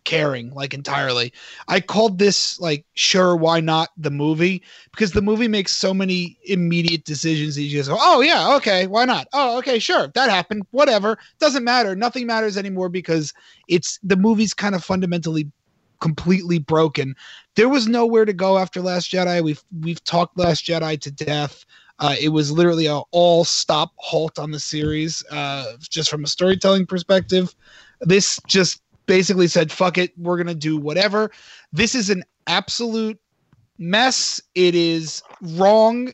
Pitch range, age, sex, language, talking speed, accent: 160-205 Hz, 30-49, male, English, 165 wpm, American